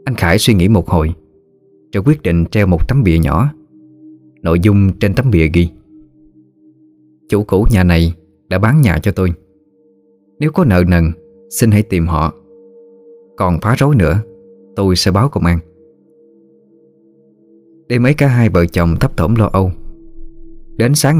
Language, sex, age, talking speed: Vietnamese, male, 20-39, 165 wpm